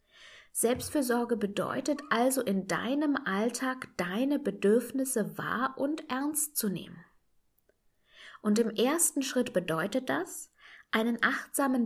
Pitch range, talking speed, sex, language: 190-255 Hz, 105 wpm, female, German